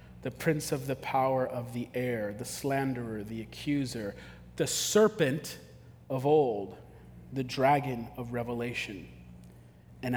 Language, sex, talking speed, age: English, male, 125 wpm, 40-59